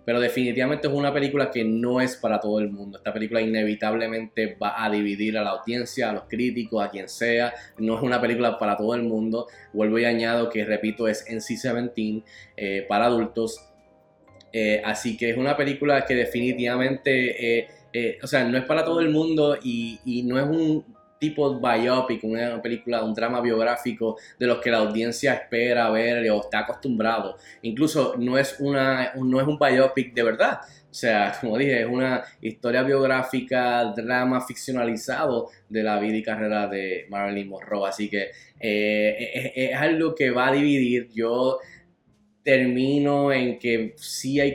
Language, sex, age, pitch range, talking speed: Spanish, male, 10-29, 110-130 Hz, 170 wpm